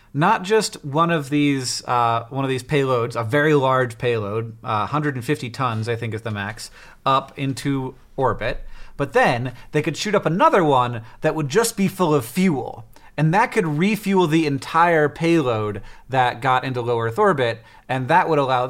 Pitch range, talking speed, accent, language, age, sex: 120-155 Hz, 185 wpm, American, English, 30-49, male